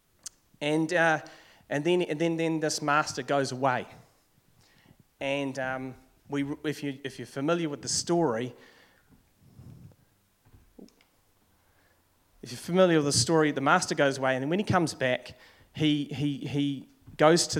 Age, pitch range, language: 30-49, 130-155 Hz, English